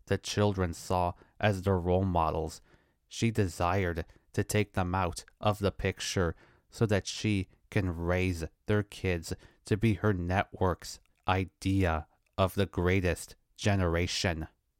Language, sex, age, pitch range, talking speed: English, male, 30-49, 85-100 Hz, 130 wpm